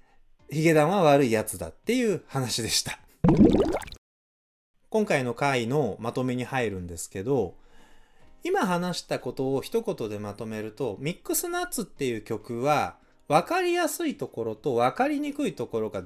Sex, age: male, 20-39